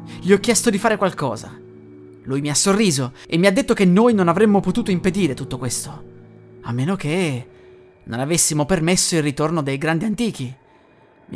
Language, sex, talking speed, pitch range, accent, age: Italian, male, 180 wpm, 125-195 Hz, native, 30-49